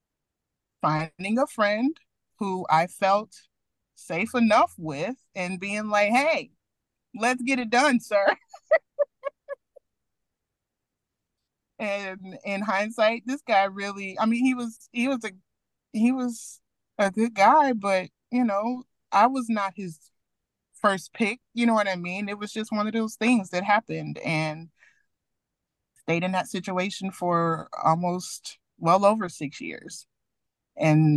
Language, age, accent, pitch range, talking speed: English, 30-49, American, 165-235 Hz, 135 wpm